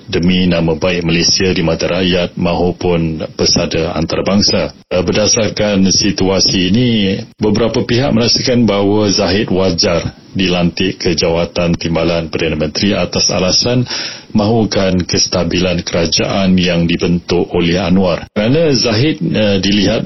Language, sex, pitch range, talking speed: Malay, male, 85-100 Hz, 115 wpm